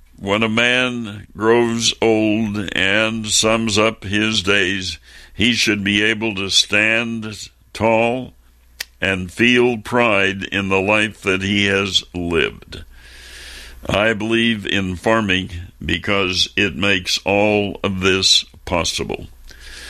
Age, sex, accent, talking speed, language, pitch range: 60-79, male, American, 115 wpm, English, 95-115 Hz